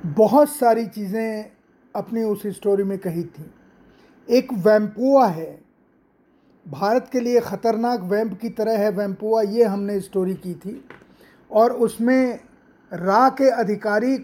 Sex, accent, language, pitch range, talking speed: male, native, Hindi, 195-230 Hz, 130 wpm